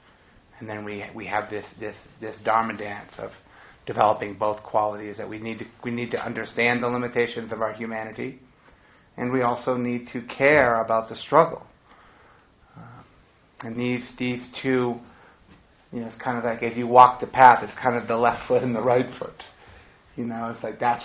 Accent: American